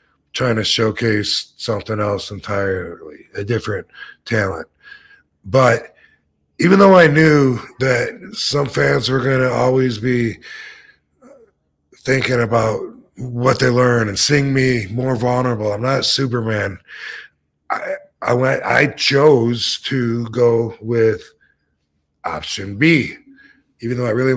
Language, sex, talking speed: English, male, 120 wpm